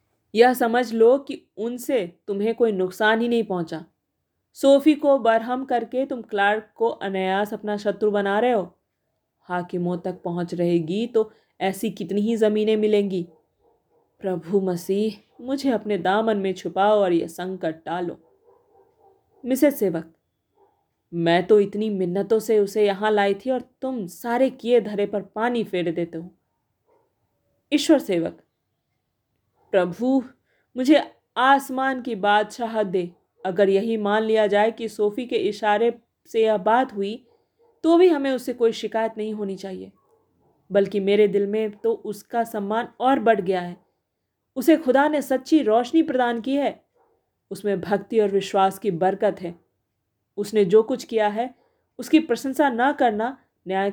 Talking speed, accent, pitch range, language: 145 wpm, native, 195-245 Hz, Hindi